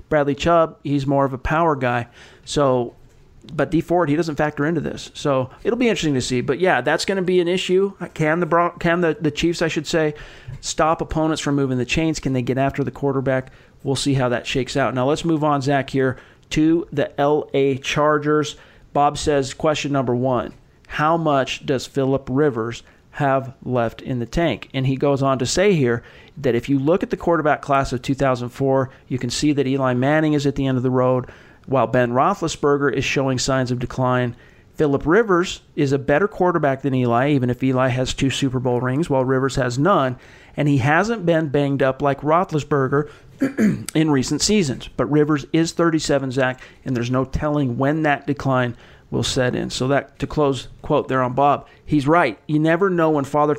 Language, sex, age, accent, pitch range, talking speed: English, male, 40-59, American, 130-155 Hz, 205 wpm